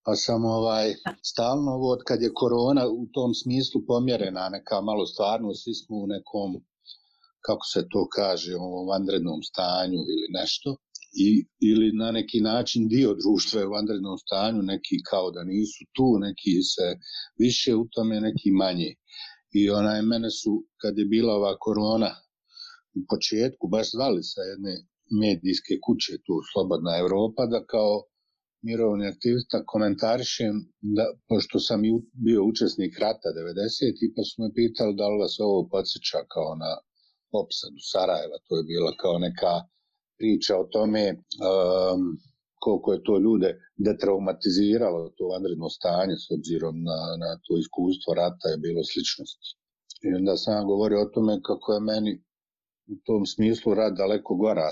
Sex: male